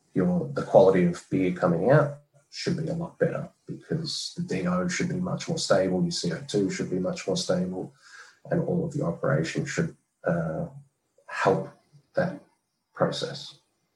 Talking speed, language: 155 wpm, English